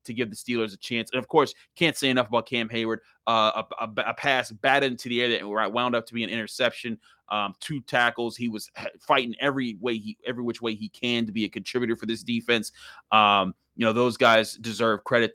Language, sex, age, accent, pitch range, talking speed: English, male, 30-49, American, 115-135 Hz, 230 wpm